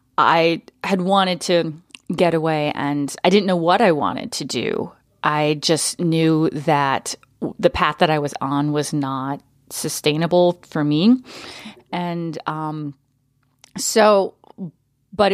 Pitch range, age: 145-195 Hz, 30-49